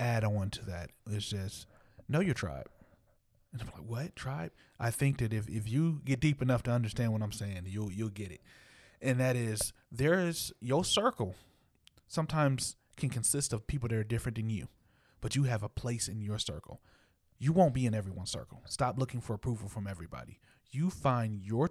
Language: English